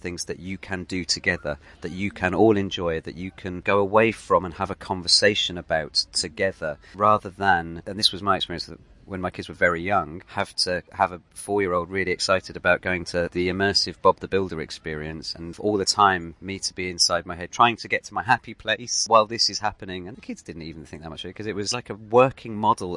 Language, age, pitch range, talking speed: English, 40-59, 90-110 Hz, 235 wpm